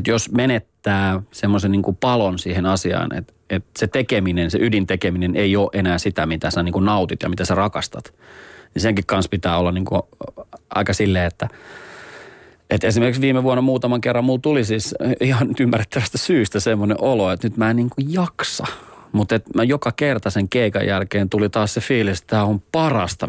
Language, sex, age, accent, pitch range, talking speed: Finnish, male, 30-49, native, 95-120 Hz, 180 wpm